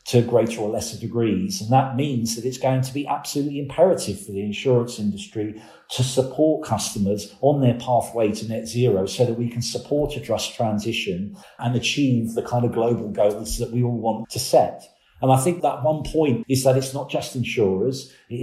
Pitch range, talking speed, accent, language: 110-135 Hz, 200 wpm, British, English